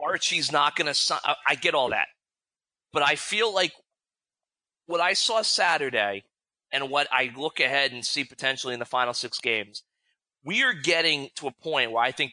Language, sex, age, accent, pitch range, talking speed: English, male, 30-49, American, 130-180 Hz, 190 wpm